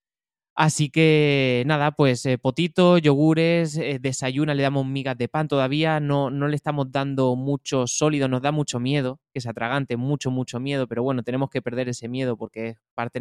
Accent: Spanish